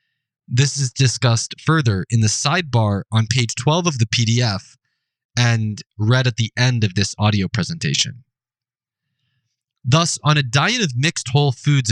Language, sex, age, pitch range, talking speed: English, male, 20-39, 115-145 Hz, 150 wpm